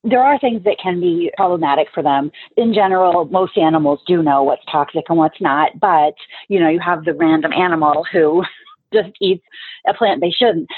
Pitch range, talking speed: 160-215 Hz, 195 wpm